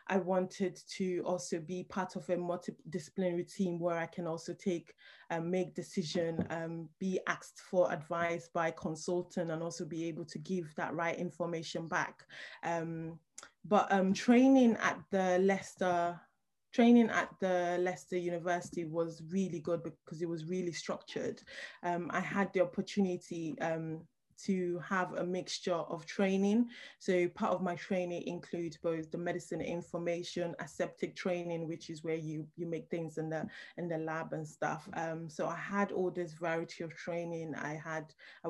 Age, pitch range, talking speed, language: 20-39, 165-180 Hz, 160 wpm, English